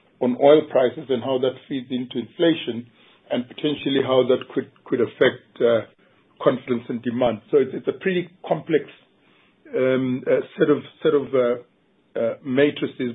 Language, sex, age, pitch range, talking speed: English, male, 50-69, 120-145 Hz, 160 wpm